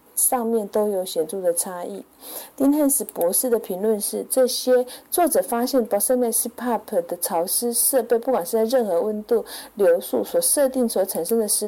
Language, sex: Chinese, female